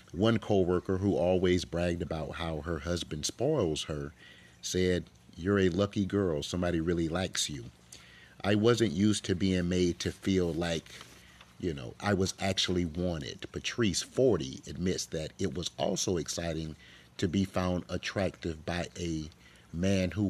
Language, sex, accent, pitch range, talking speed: English, male, American, 80-95 Hz, 150 wpm